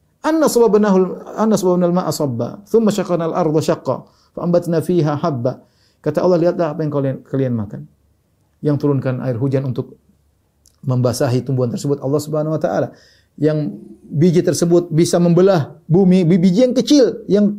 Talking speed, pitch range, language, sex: 110 wpm, 125-165 Hz, Indonesian, male